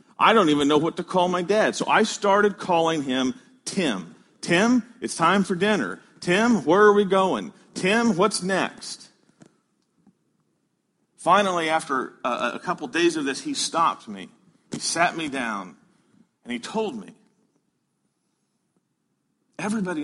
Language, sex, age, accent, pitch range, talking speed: English, male, 50-69, American, 185-235 Hz, 145 wpm